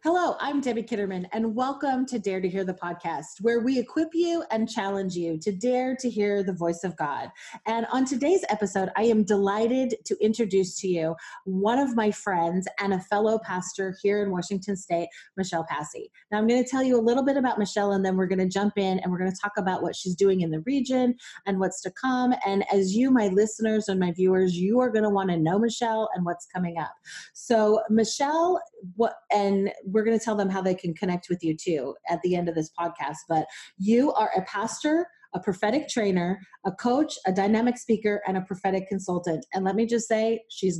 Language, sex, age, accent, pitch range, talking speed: English, female, 30-49, American, 185-235 Hz, 220 wpm